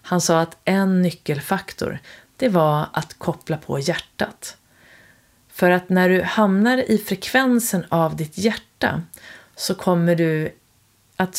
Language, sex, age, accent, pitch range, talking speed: Swedish, female, 30-49, native, 145-185 Hz, 130 wpm